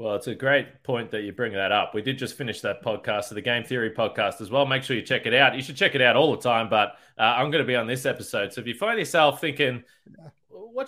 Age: 20-39